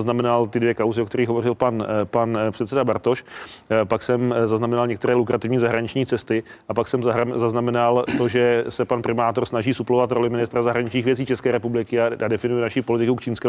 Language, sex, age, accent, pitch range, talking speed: Czech, male, 30-49, native, 110-125 Hz, 185 wpm